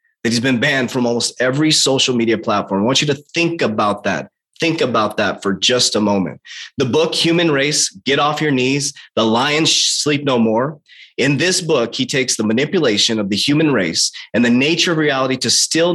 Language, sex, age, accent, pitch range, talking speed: English, male, 30-49, American, 115-150 Hz, 205 wpm